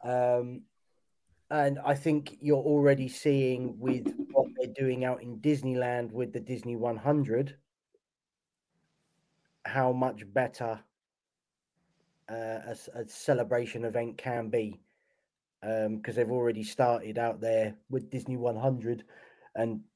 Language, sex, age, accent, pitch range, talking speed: English, male, 20-39, British, 110-130 Hz, 115 wpm